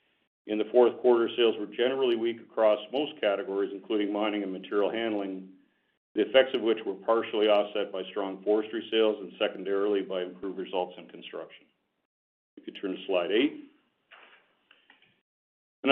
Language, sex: English, male